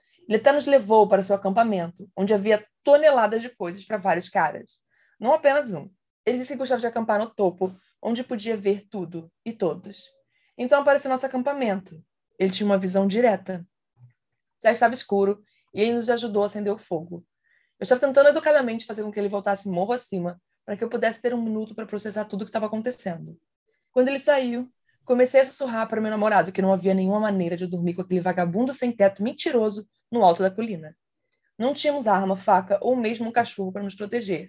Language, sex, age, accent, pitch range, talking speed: Portuguese, female, 20-39, Brazilian, 185-240 Hz, 200 wpm